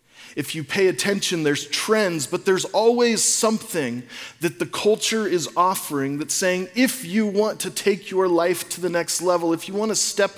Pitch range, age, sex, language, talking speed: 165-210 Hz, 30-49, male, English, 185 wpm